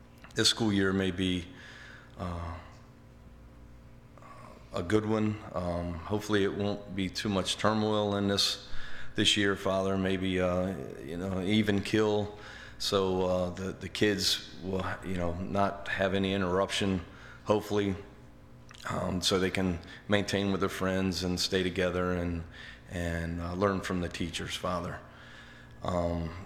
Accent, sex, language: American, male, English